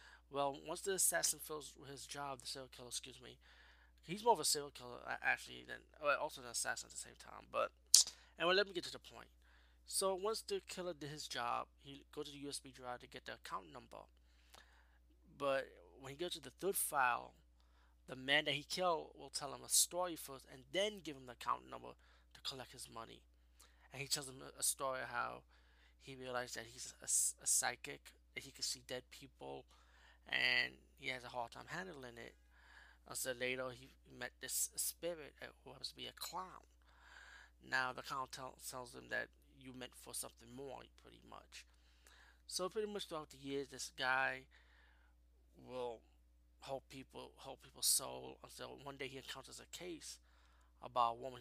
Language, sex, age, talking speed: English, male, 20-39, 190 wpm